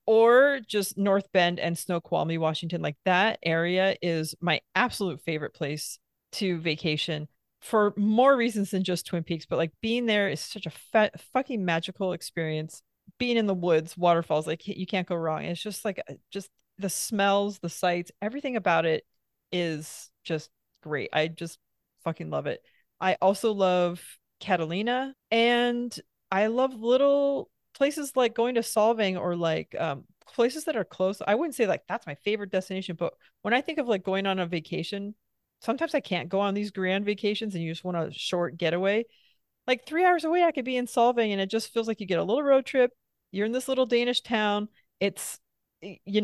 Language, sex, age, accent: English, female, 30-49, American